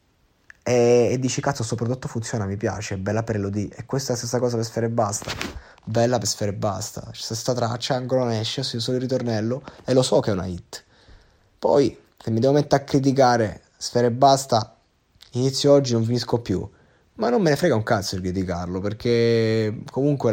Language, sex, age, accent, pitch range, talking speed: Italian, male, 20-39, native, 100-120 Hz, 205 wpm